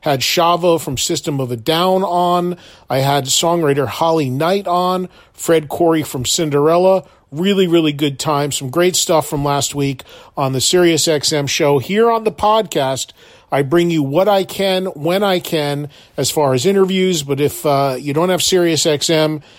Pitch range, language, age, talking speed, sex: 140-175 Hz, English, 40-59, 170 wpm, male